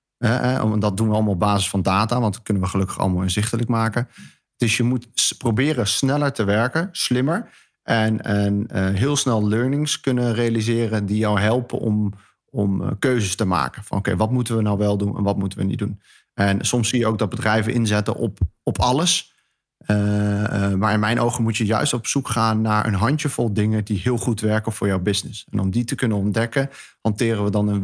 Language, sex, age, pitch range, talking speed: Dutch, male, 40-59, 100-115 Hz, 215 wpm